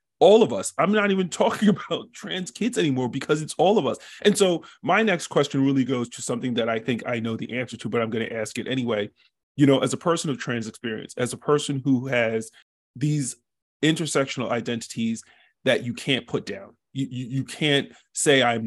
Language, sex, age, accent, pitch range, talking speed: English, male, 30-49, American, 115-140 Hz, 210 wpm